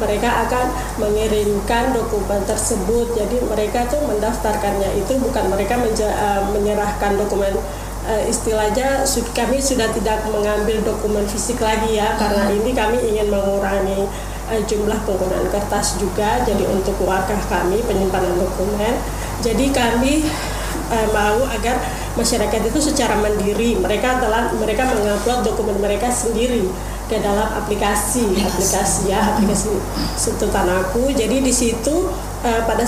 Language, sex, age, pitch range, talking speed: Indonesian, female, 20-39, 200-235 Hz, 120 wpm